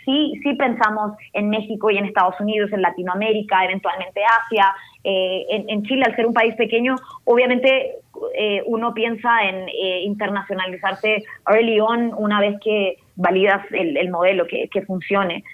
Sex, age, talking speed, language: female, 20-39, 160 wpm, English